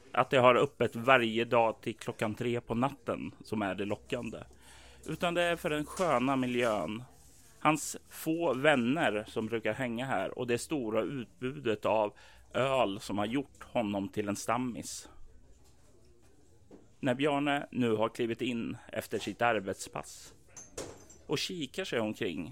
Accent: native